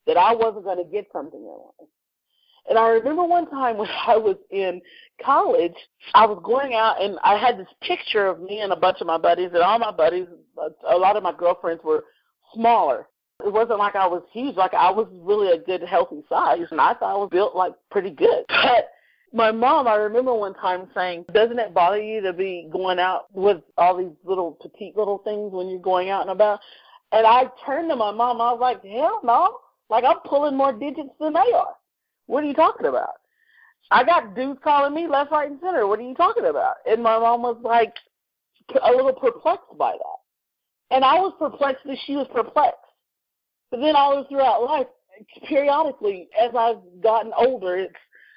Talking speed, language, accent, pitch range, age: 210 wpm, English, American, 195-300 Hz, 40-59